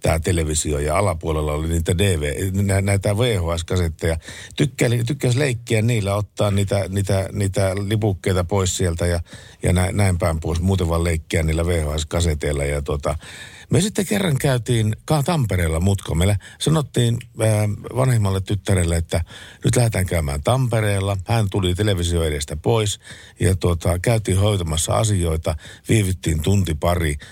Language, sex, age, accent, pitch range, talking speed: Finnish, male, 50-69, native, 85-115 Hz, 135 wpm